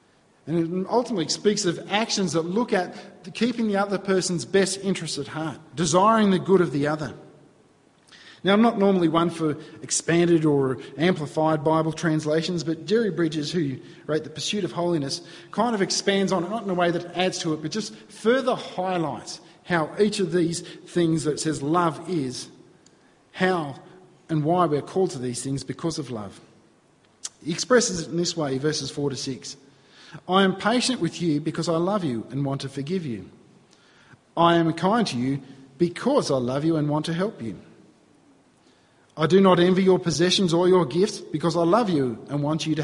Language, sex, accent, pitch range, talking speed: English, male, Australian, 150-185 Hz, 190 wpm